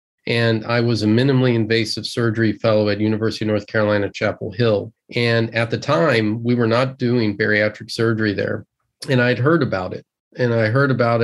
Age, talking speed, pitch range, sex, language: 40-59, 185 wpm, 110-125 Hz, male, English